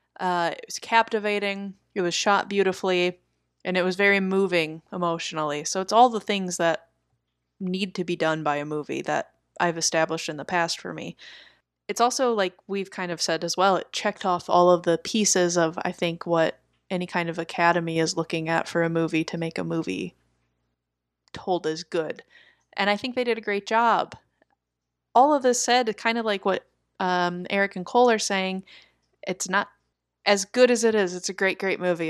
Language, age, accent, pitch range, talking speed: English, 20-39, American, 170-210 Hz, 200 wpm